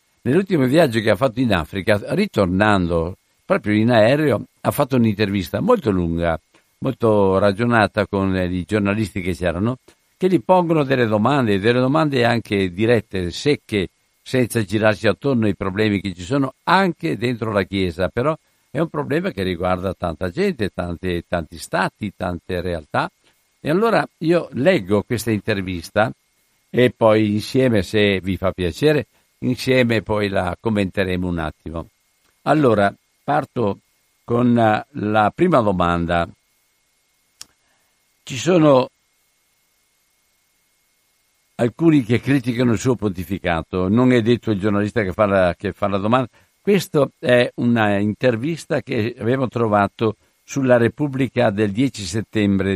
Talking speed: 130 wpm